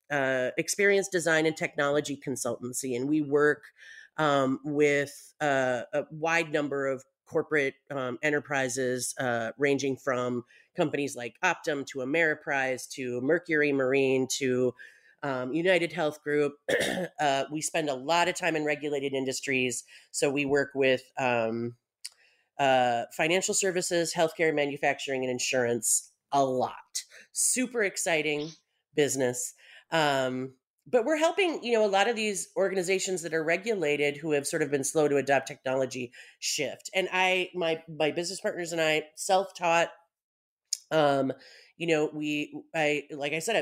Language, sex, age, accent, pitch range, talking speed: English, female, 30-49, American, 135-170 Hz, 145 wpm